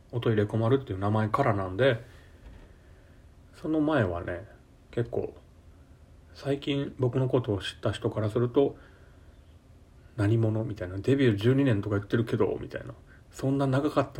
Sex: male